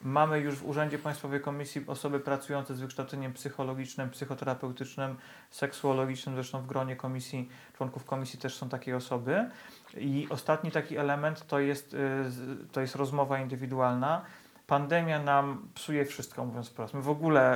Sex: male